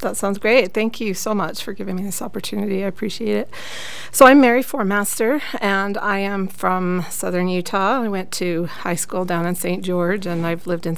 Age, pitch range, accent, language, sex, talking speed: 40-59, 170-195 Hz, American, English, female, 210 wpm